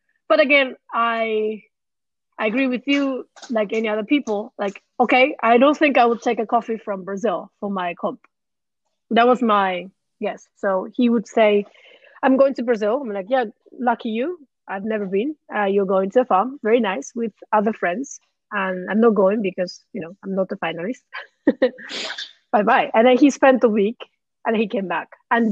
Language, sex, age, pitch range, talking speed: English, female, 30-49, 205-265 Hz, 190 wpm